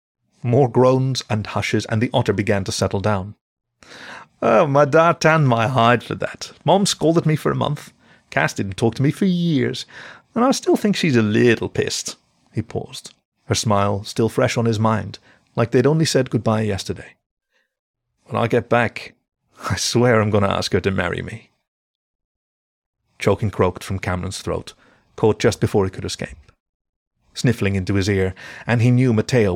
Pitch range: 100-125 Hz